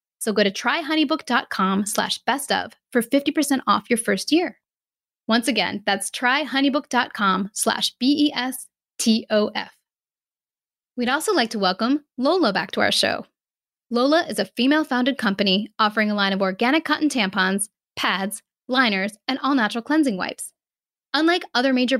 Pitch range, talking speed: 210-270 Hz, 135 wpm